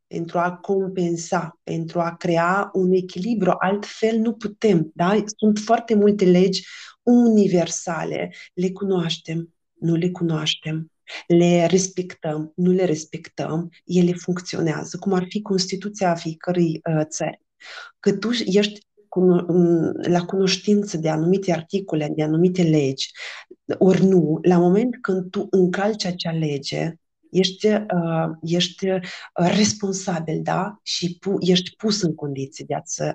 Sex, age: female, 30-49